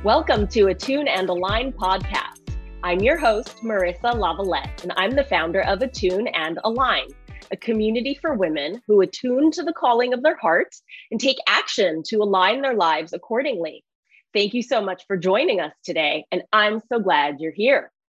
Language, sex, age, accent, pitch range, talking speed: English, female, 30-49, American, 185-240 Hz, 175 wpm